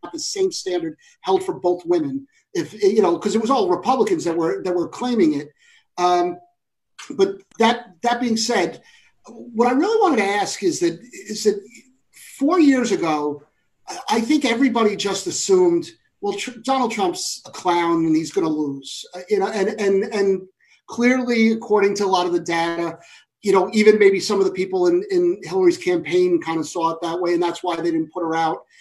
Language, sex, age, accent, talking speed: English, male, 40-59, American, 195 wpm